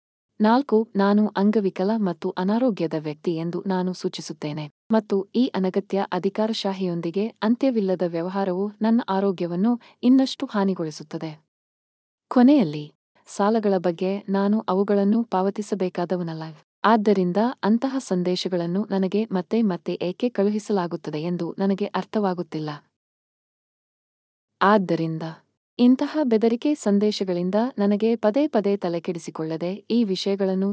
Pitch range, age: 175-225 Hz, 20-39